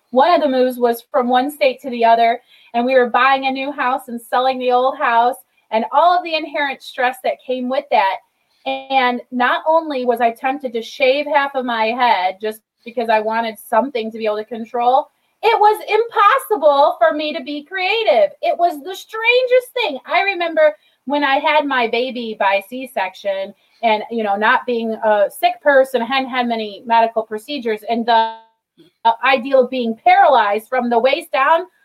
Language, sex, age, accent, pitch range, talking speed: English, female, 30-49, American, 230-305 Hz, 190 wpm